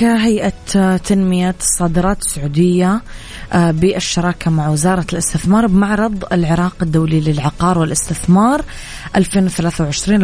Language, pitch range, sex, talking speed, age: Arabic, 160-185 Hz, female, 80 wpm, 20-39